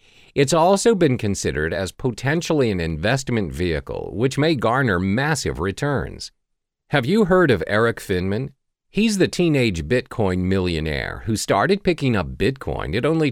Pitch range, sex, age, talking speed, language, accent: 100-150 Hz, male, 50-69, 145 wpm, English, American